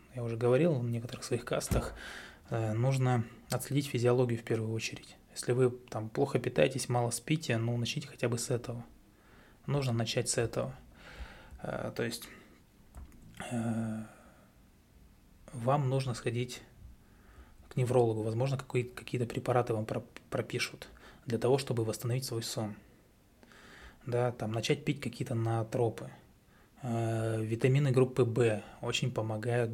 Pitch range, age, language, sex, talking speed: 115-130 Hz, 20-39, Russian, male, 120 wpm